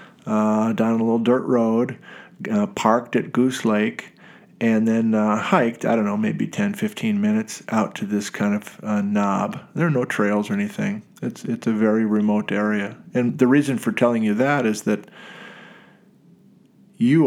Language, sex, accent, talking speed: English, male, American, 175 wpm